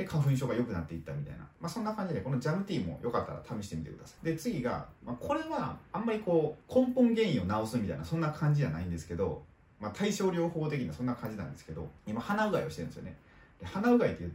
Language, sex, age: Japanese, male, 30-49